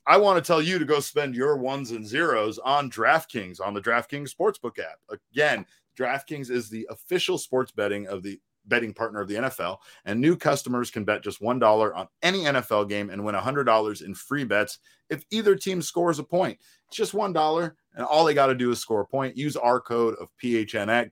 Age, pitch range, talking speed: 30-49, 110-150 Hz, 220 wpm